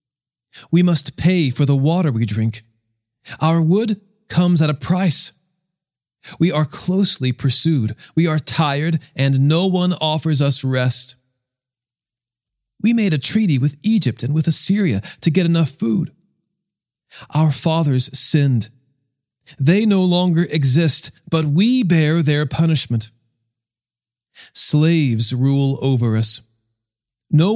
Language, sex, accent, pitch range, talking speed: English, male, American, 125-165 Hz, 125 wpm